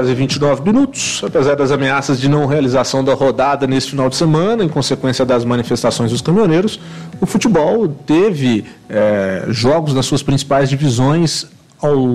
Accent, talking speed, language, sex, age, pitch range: Brazilian, 165 wpm, English, male, 40-59, 140-180 Hz